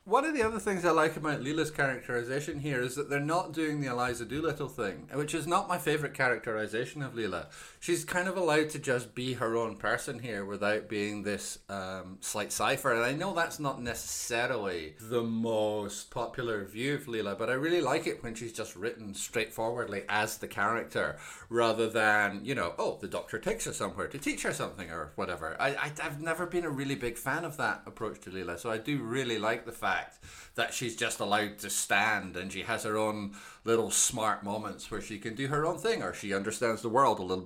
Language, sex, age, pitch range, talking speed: English, male, 30-49, 100-140 Hz, 215 wpm